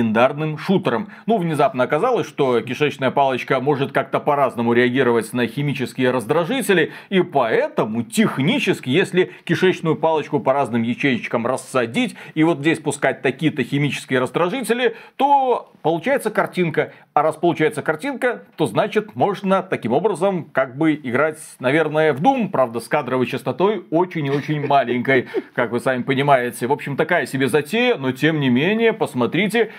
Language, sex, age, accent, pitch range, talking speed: Russian, male, 40-59, native, 135-180 Hz, 145 wpm